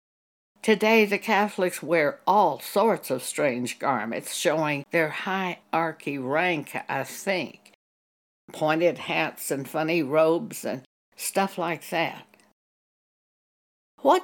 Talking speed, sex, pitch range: 105 wpm, female, 145-215 Hz